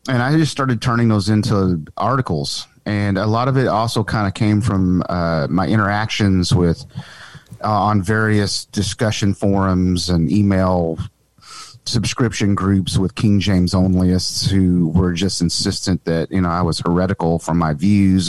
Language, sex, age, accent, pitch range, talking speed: English, male, 30-49, American, 95-115 Hz, 160 wpm